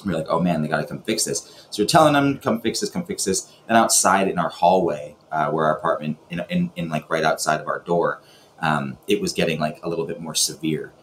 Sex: male